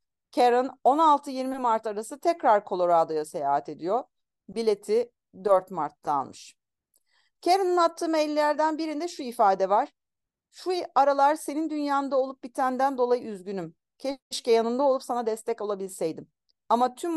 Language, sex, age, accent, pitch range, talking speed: Turkish, female, 40-59, native, 195-270 Hz, 120 wpm